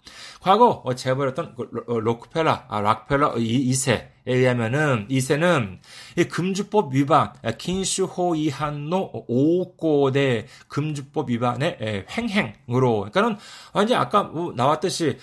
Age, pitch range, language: 40-59, 145-215 Hz, Korean